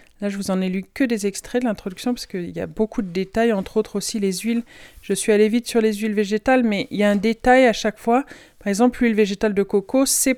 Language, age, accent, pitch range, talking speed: French, 40-59, French, 200-245 Hz, 270 wpm